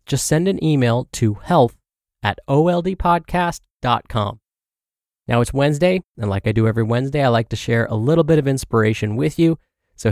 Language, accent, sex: English, American, male